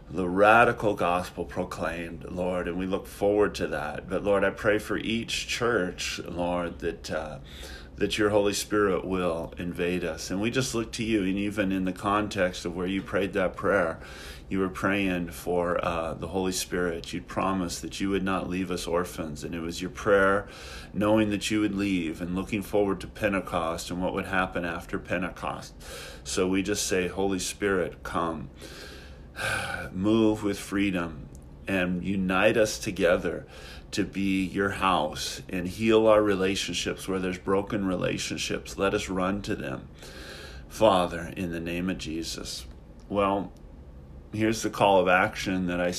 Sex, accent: male, American